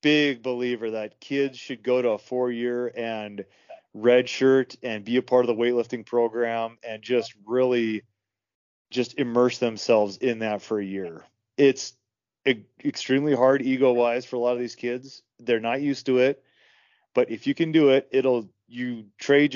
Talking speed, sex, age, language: 175 wpm, male, 30-49, English